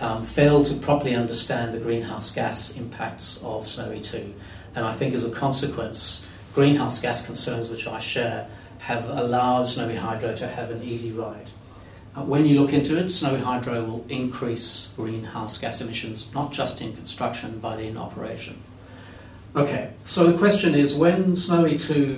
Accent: British